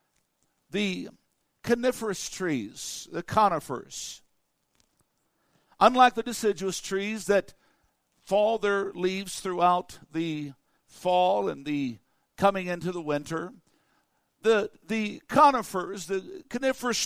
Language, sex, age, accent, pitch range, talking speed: English, male, 60-79, American, 175-225 Hz, 95 wpm